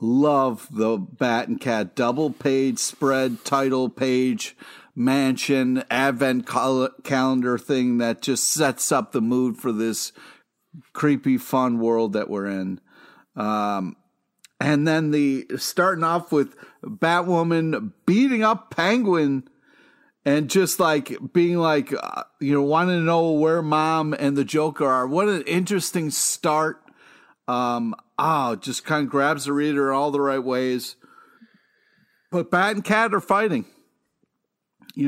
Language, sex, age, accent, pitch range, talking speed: English, male, 50-69, American, 130-170 Hz, 135 wpm